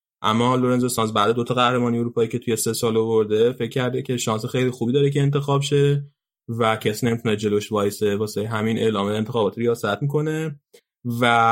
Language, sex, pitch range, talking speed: Persian, male, 115-140 Hz, 180 wpm